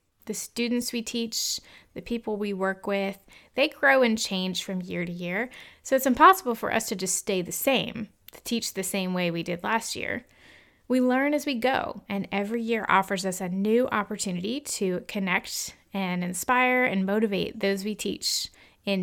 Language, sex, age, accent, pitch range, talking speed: English, female, 20-39, American, 185-235 Hz, 185 wpm